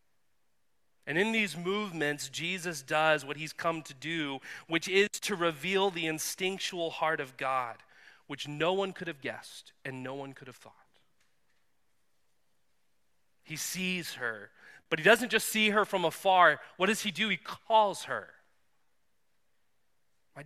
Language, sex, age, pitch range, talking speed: English, male, 30-49, 145-195 Hz, 150 wpm